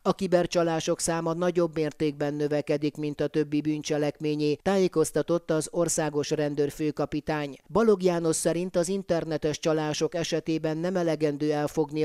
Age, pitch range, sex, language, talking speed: 30-49, 150-170 Hz, male, Hungarian, 115 wpm